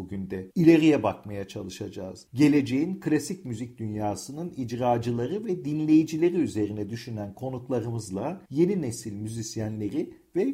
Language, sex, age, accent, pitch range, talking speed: Turkish, male, 50-69, native, 105-155 Hz, 110 wpm